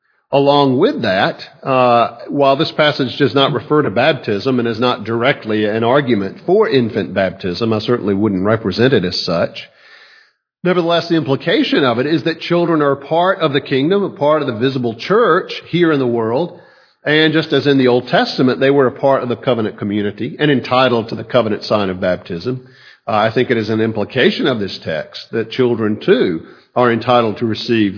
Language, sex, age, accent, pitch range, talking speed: English, male, 50-69, American, 115-150 Hz, 195 wpm